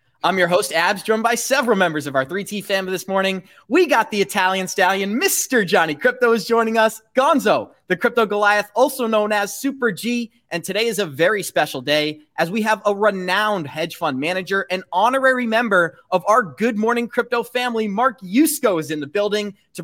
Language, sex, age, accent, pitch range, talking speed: English, male, 30-49, American, 175-220 Hz, 195 wpm